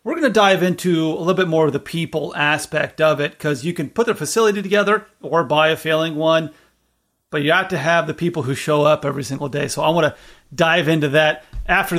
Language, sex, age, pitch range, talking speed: English, male, 30-49, 155-190 Hz, 240 wpm